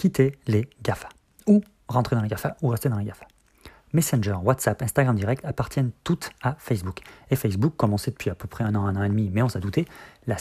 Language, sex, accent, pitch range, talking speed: French, male, French, 105-135 Hz, 235 wpm